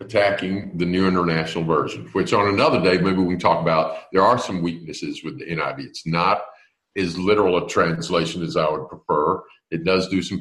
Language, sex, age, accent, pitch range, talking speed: English, male, 50-69, American, 85-120 Hz, 200 wpm